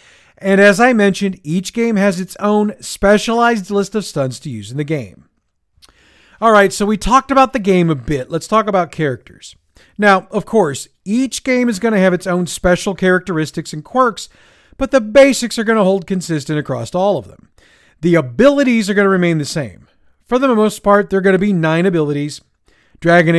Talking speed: 200 wpm